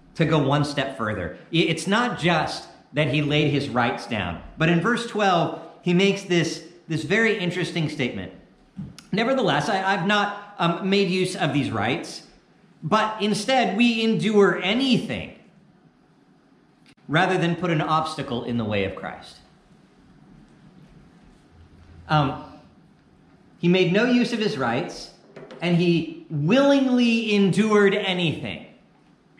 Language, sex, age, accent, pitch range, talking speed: English, male, 40-59, American, 140-205 Hz, 130 wpm